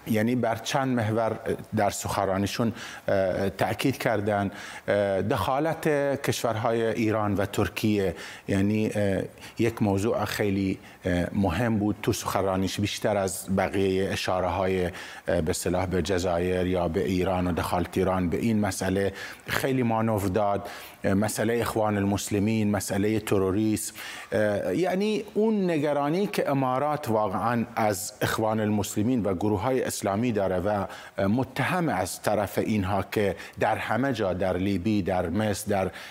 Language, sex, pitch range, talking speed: Persian, male, 100-125 Hz, 125 wpm